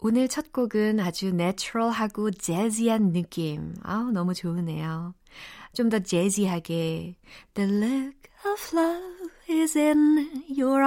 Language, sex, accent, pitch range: Korean, female, native, 165-235 Hz